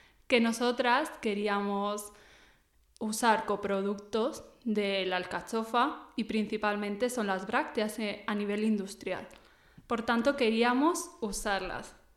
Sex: female